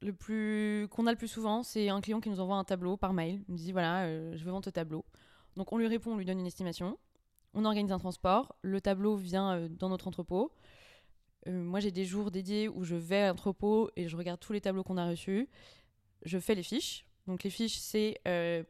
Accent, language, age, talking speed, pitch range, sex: French, French, 20-39, 245 wpm, 175-200 Hz, female